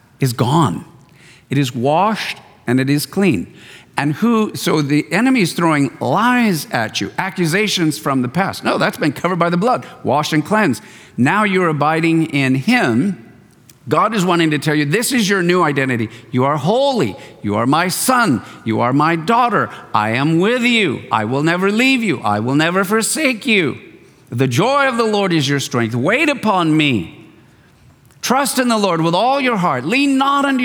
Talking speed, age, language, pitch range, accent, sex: 190 wpm, 50-69, English, 145-215 Hz, American, male